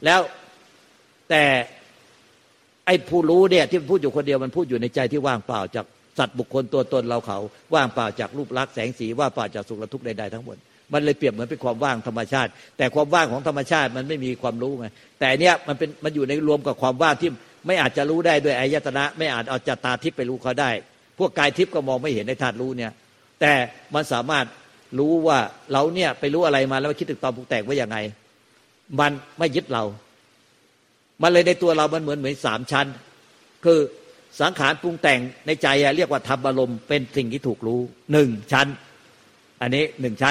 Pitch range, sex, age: 125-165 Hz, male, 60-79